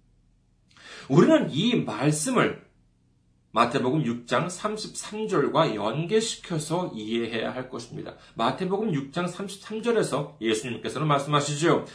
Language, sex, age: Korean, male, 40-59